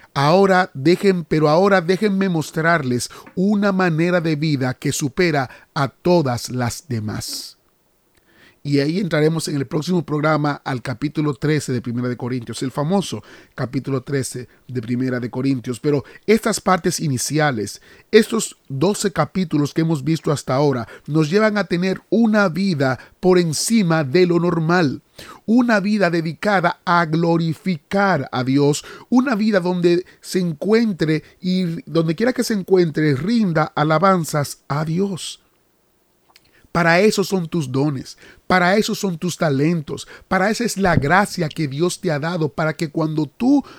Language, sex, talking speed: Spanish, male, 145 wpm